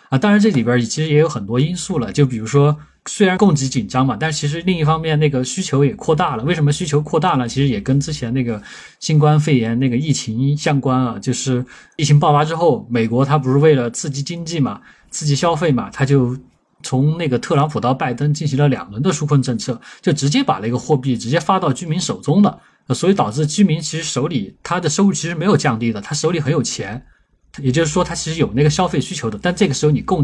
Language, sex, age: Chinese, male, 20-39